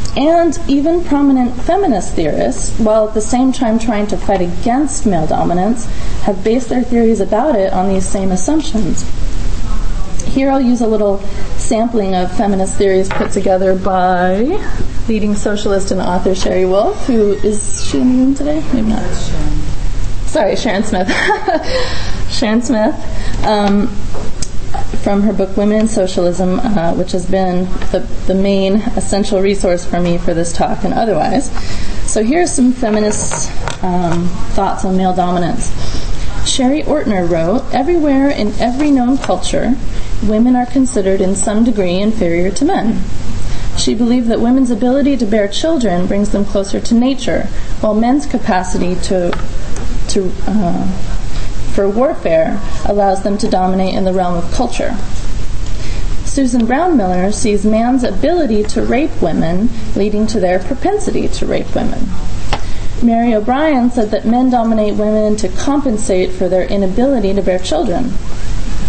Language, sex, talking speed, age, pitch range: English, female, 145 wpm, 30-49, 190-250 Hz